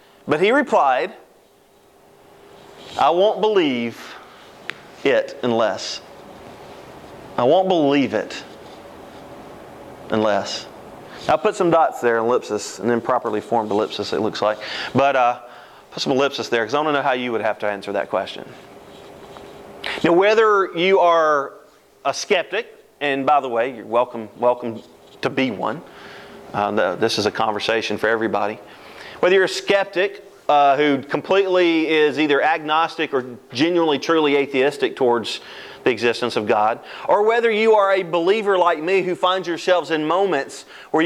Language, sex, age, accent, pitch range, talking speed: English, male, 30-49, American, 135-195 Hz, 145 wpm